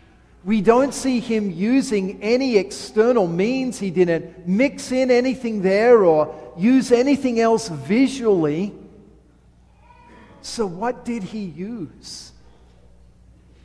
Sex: male